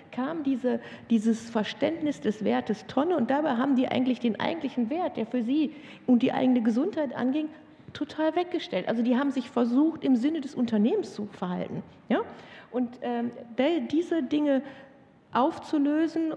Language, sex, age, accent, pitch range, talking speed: German, female, 50-69, German, 220-275 Hz, 145 wpm